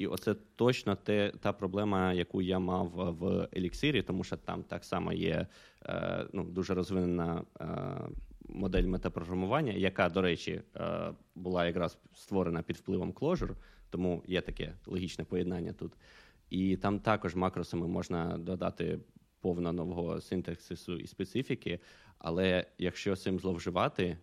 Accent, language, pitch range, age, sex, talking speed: native, Ukrainian, 85-95 Hz, 20-39, male, 140 wpm